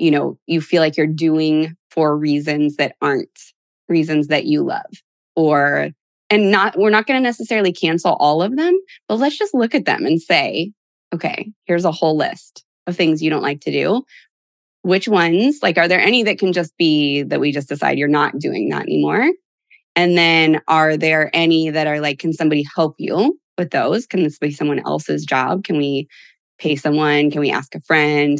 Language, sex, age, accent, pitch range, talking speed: English, female, 20-39, American, 150-200 Hz, 200 wpm